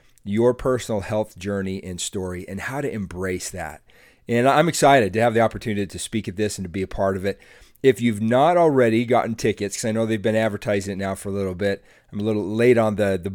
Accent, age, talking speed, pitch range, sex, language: American, 30-49, 245 wpm, 100-120 Hz, male, English